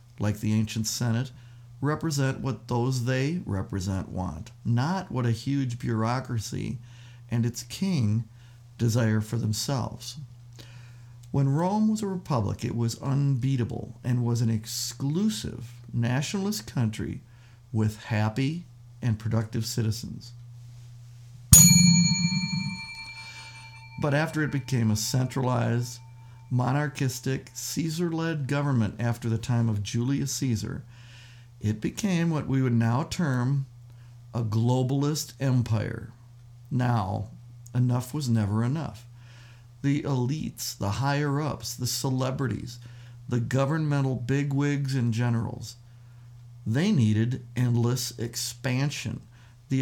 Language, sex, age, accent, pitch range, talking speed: English, male, 50-69, American, 115-135 Hz, 105 wpm